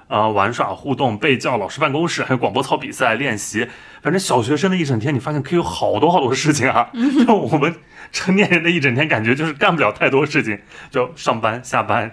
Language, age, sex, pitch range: Chinese, 30-49, male, 115-150 Hz